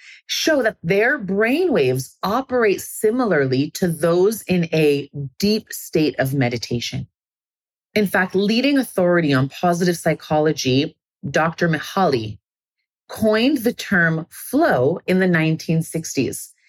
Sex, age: female, 30-49